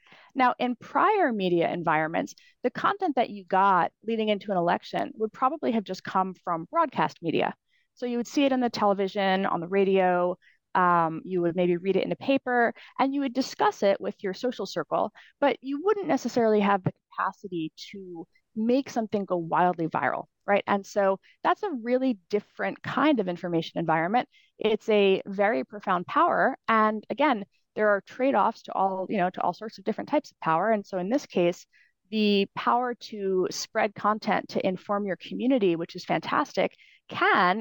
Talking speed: 185 wpm